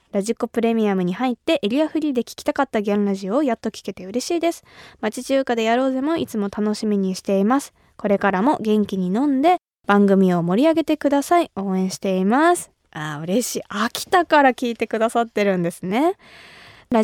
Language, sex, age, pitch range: Japanese, female, 20-39, 195-280 Hz